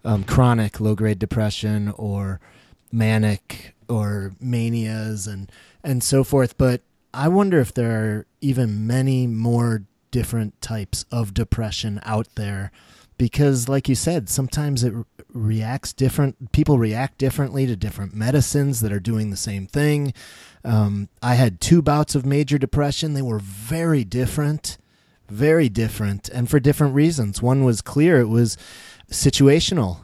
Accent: American